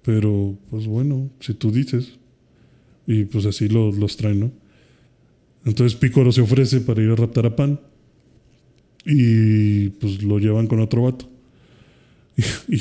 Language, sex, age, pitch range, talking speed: Spanish, male, 20-39, 105-130 Hz, 145 wpm